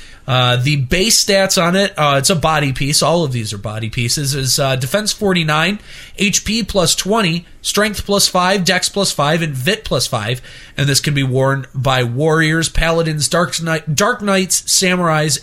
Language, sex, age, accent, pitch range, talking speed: English, male, 30-49, American, 130-170 Hz, 185 wpm